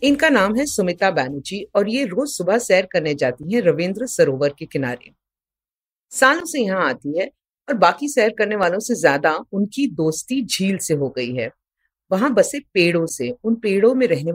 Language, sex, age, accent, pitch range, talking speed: Hindi, female, 50-69, native, 160-250 Hz, 185 wpm